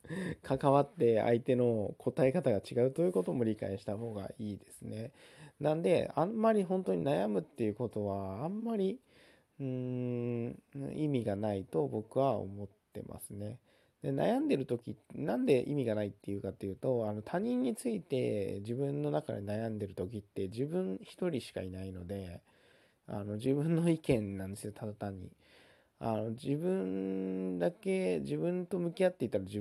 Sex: male